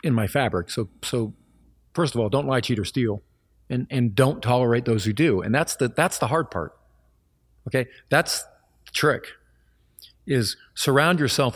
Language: English